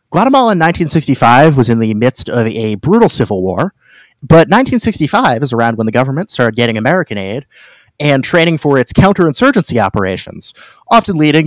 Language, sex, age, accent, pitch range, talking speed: English, male, 30-49, American, 125-190 Hz, 160 wpm